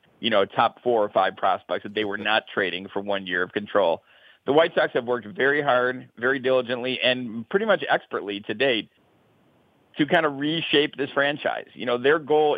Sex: male